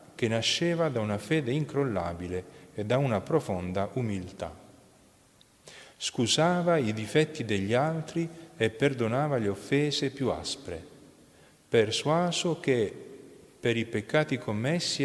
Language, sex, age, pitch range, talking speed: Italian, male, 40-59, 105-140 Hz, 110 wpm